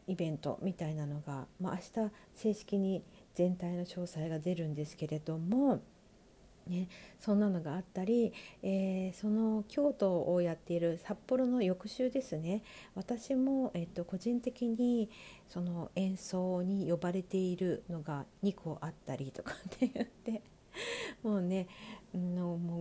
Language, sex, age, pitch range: Japanese, female, 50-69, 170-225 Hz